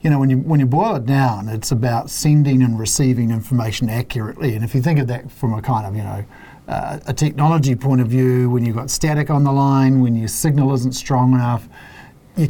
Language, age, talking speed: English, 50-69, 230 wpm